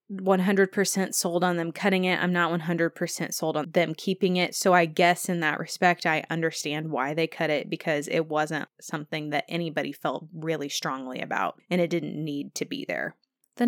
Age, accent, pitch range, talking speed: 20-39, American, 160-195 Hz, 190 wpm